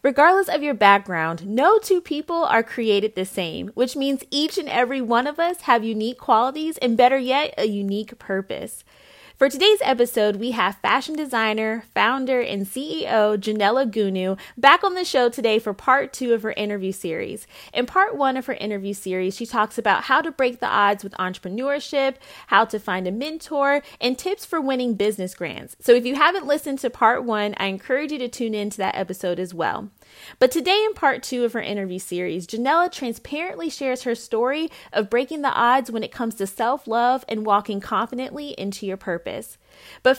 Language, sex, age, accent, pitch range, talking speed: English, female, 20-39, American, 200-270 Hz, 190 wpm